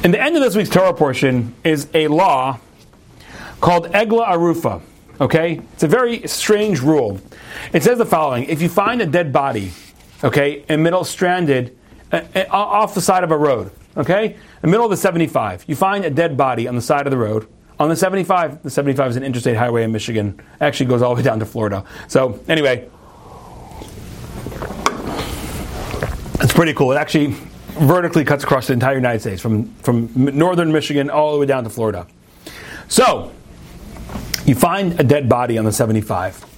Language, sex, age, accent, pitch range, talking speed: English, male, 40-59, American, 125-180 Hz, 185 wpm